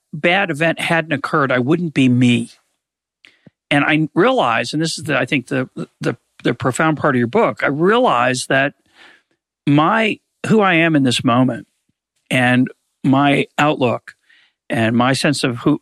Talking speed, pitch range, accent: 165 wpm, 125-155 Hz, American